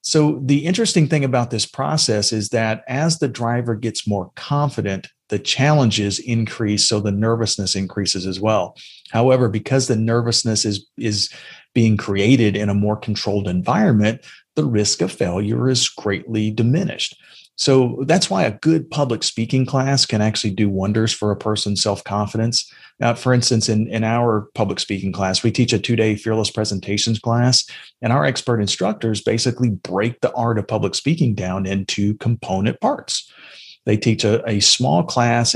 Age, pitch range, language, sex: 40-59, 100-120 Hz, English, male